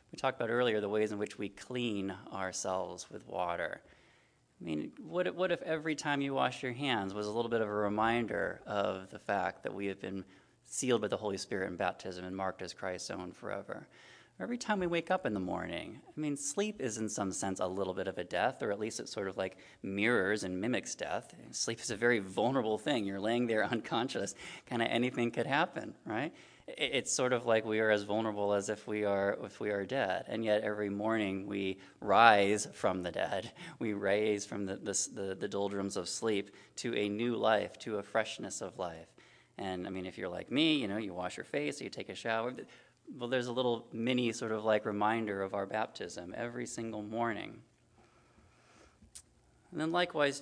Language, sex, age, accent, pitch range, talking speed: English, male, 20-39, American, 100-120 Hz, 210 wpm